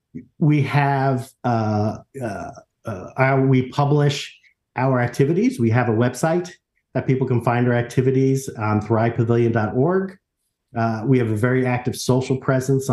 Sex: male